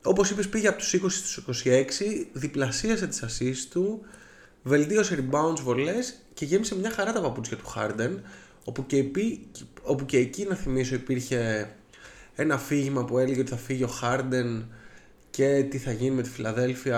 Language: Greek